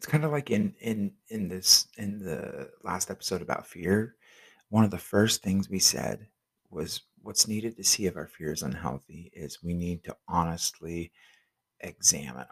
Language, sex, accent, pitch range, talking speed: English, male, American, 95-115 Hz, 175 wpm